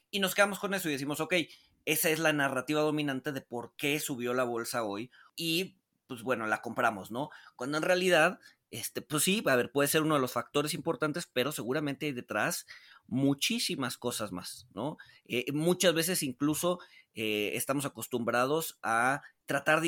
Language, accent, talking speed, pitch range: Spanish, Mexican, 180 wpm, 120-150 Hz